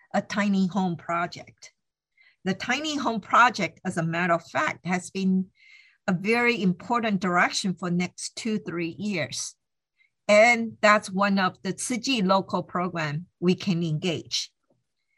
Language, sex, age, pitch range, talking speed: English, female, 50-69, 175-215 Hz, 140 wpm